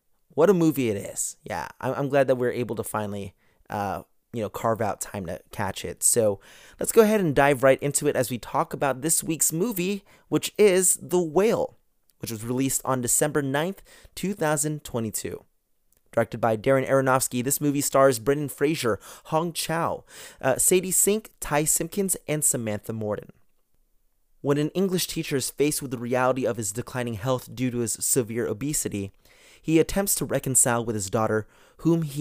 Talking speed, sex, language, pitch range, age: 175 wpm, male, English, 115-160 Hz, 30-49